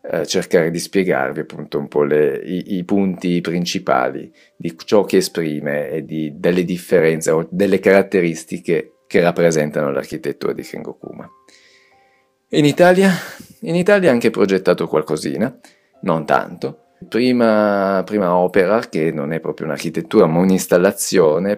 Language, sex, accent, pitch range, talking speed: Italian, male, native, 80-115 Hz, 130 wpm